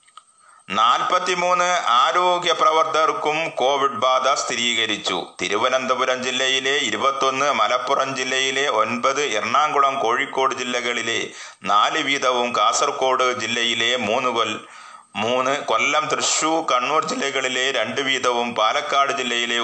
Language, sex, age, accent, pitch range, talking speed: Malayalam, male, 30-49, native, 135-180 Hz, 85 wpm